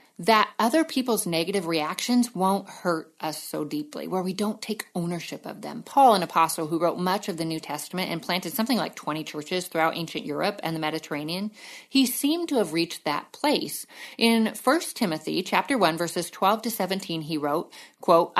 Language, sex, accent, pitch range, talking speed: English, female, American, 165-215 Hz, 185 wpm